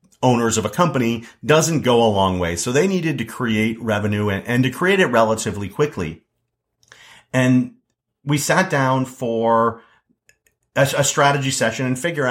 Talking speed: 160 wpm